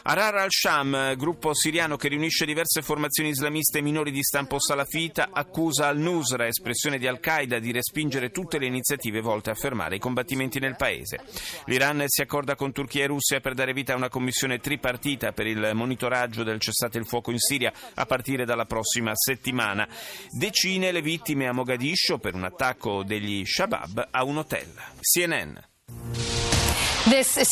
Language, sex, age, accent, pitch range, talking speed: Italian, male, 30-49, native, 120-165 Hz, 160 wpm